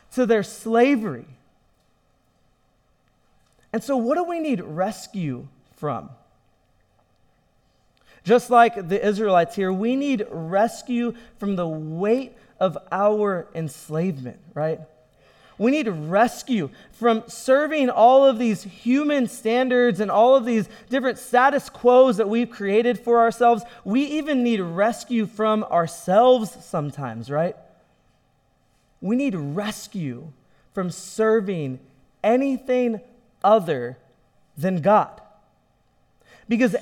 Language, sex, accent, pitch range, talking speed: English, male, American, 170-235 Hz, 110 wpm